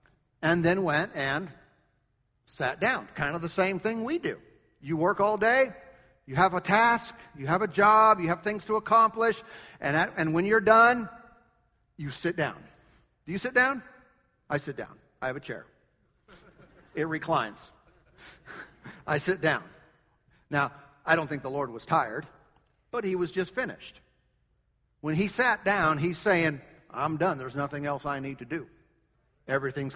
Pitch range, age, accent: 145-180 Hz, 50-69, American